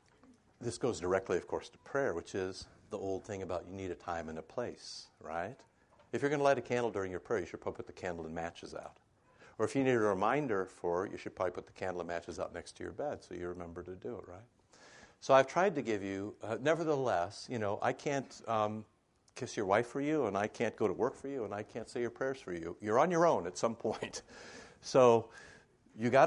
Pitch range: 90-115 Hz